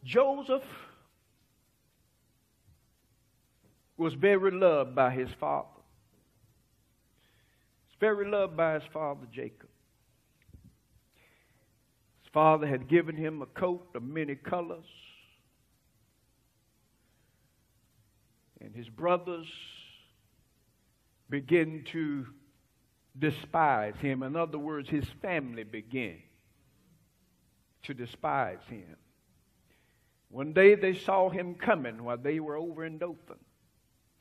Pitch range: 120-180 Hz